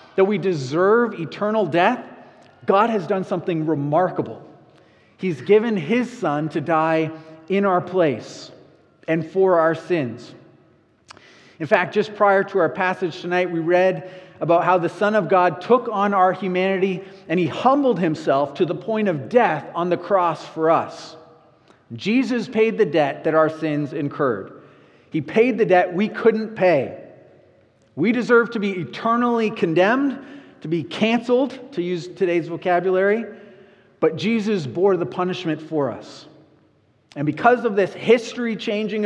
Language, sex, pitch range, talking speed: English, male, 155-205 Hz, 150 wpm